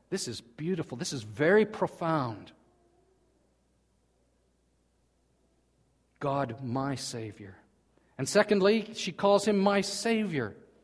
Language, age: English, 50-69